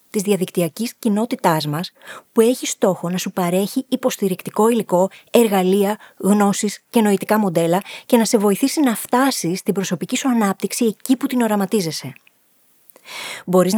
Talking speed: 140 wpm